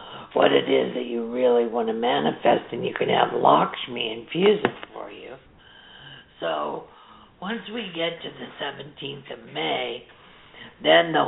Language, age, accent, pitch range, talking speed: English, 50-69, American, 115-155 Hz, 155 wpm